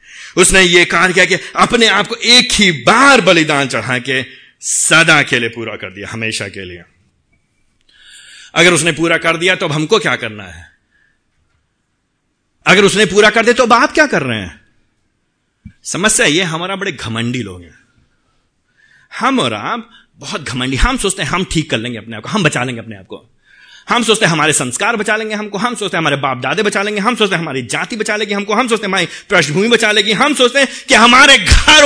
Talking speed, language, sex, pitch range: 200 wpm, Hindi, male, 160-255 Hz